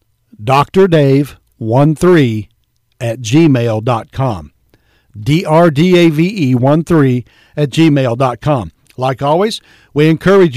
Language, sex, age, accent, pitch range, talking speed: English, male, 60-79, American, 125-165 Hz, 55 wpm